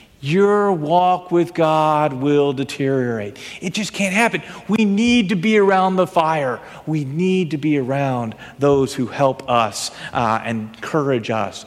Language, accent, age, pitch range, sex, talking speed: English, American, 40-59, 130-205 Hz, male, 150 wpm